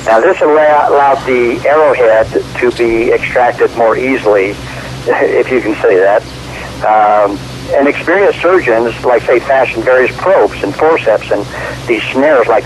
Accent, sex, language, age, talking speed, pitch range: American, male, English, 60-79, 140 wpm, 115-145 Hz